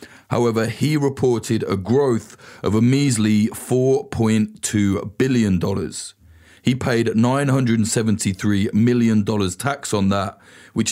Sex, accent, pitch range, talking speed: male, British, 100-120 Hz, 100 wpm